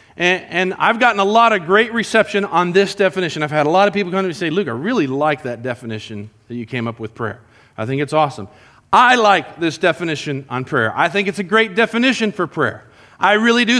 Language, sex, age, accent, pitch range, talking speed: English, male, 40-59, American, 185-250 Hz, 240 wpm